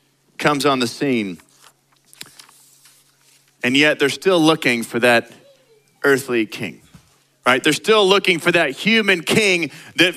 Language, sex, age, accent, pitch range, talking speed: English, male, 40-59, American, 165-220 Hz, 130 wpm